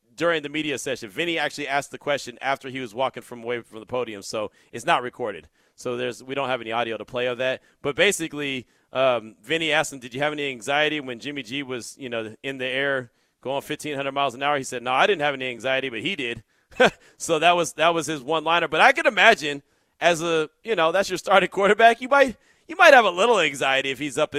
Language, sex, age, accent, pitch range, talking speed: English, male, 30-49, American, 135-185 Hz, 245 wpm